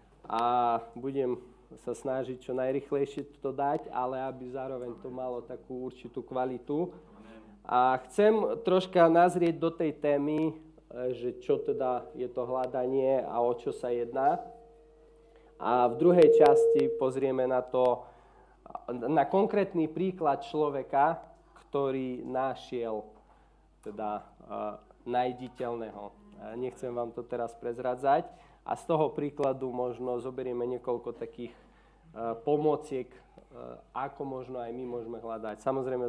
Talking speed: 115 wpm